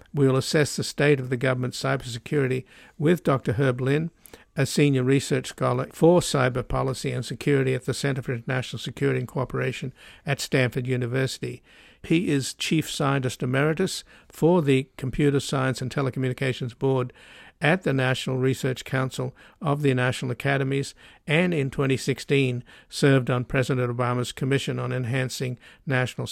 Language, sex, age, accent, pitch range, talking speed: English, male, 60-79, American, 130-145 Hz, 150 wpm